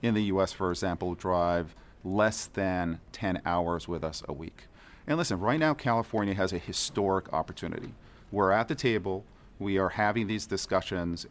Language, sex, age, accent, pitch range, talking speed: English, male, 40-59, American, 90-115 Hz, 170 wpm